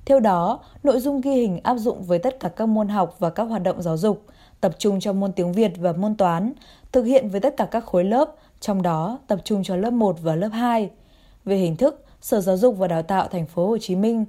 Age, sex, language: 20-39, female, Vietnamese